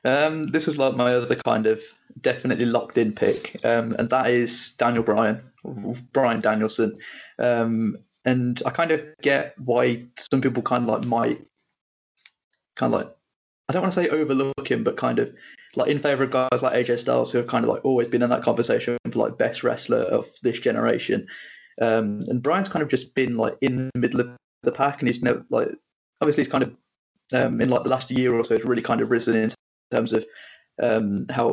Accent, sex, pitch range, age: British, male, 115-135 Hz, 20-39